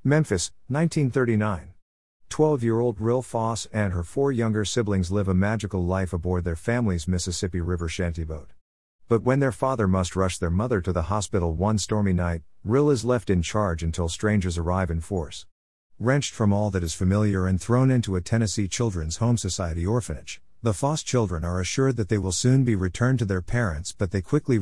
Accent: American